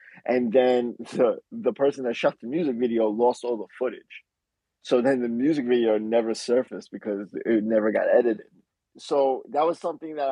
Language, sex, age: English, male, 20-39